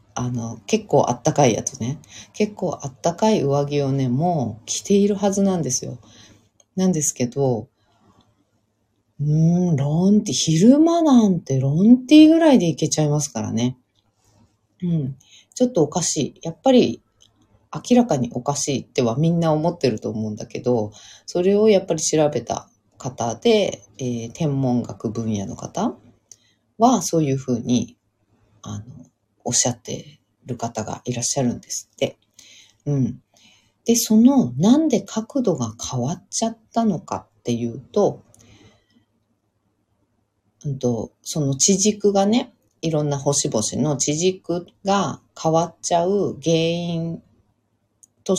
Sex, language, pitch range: female, Japanese, 115-175 Hz